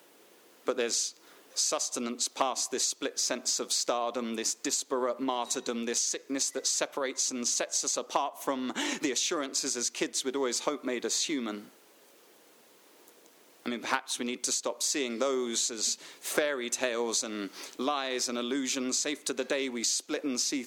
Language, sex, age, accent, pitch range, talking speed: English, male, 30-49, British, 120-180 Hz, 165 wpm